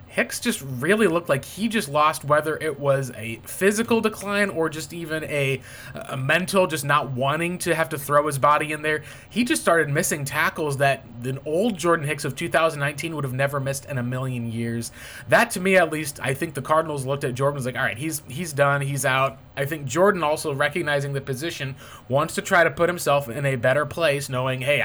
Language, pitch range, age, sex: English, 140-170 Hz, 20-39, male